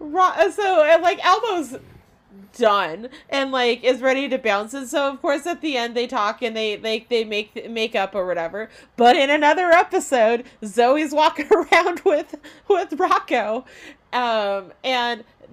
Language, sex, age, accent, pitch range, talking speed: English, female, 30-49, American, 225-305 Hz, 155 wpm